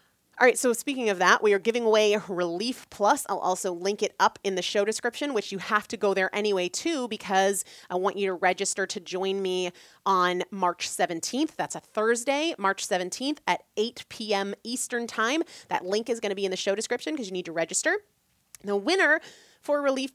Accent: American